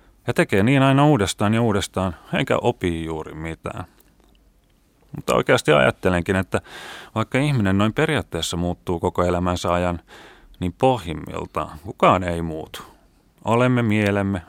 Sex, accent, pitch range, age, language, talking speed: male, native, 90-120 Hz, 30-49, Finnish, 125 wpm